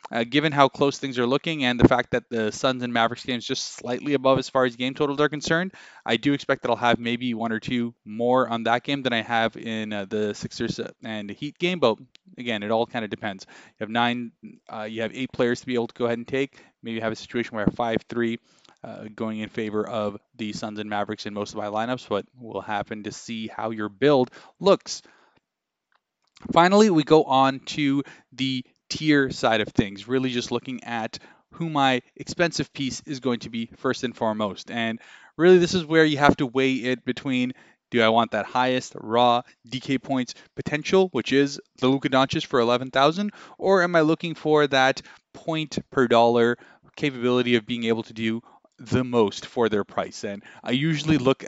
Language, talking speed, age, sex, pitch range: English, 210 wpm, 20-39, male, 115-135 Hz